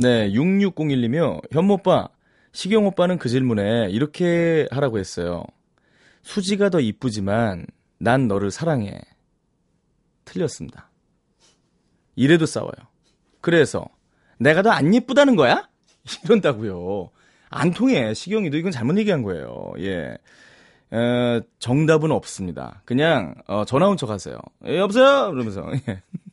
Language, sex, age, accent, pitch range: Korean, male, 30-49, native, 105-175 Hz